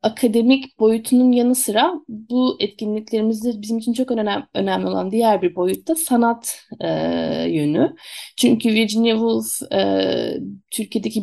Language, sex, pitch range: Turkish, female, 200-250 Hz